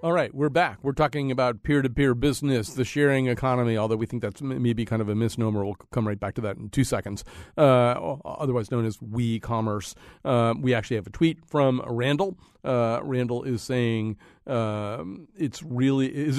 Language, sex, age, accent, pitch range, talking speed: English, male, 40-59, American, 110-145 Hz, 185 wpm